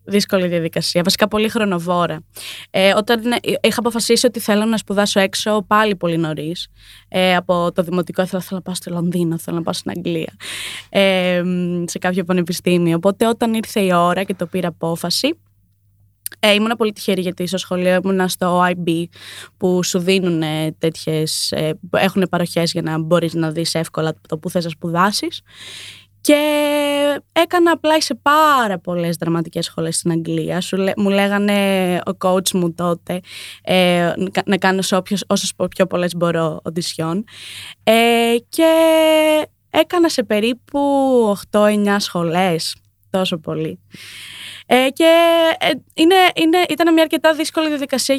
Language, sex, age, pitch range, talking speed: Greek, female, 20-39, 175-235 Hz, 135 wpm